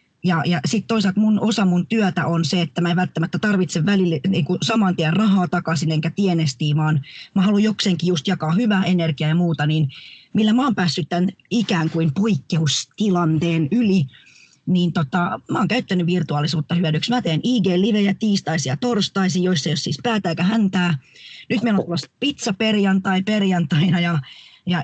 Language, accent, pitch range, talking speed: Finnish, native, 165-195 Hz, 175 wpm